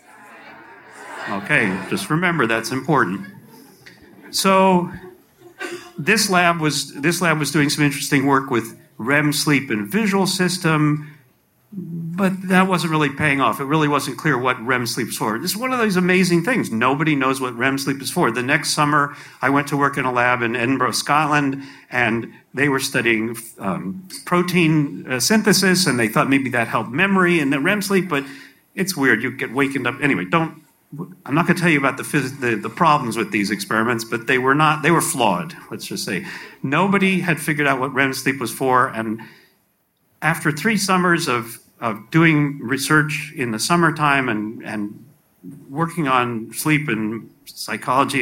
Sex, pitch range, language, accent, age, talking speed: male, 130-170 Hz, English, American, 50-69, 180 wpm